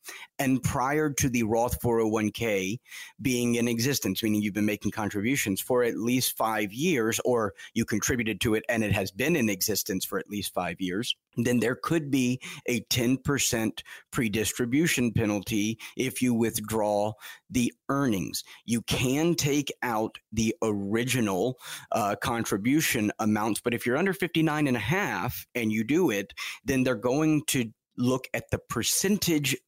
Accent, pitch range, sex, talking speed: American, 110-130 Hz, male, 155 wpm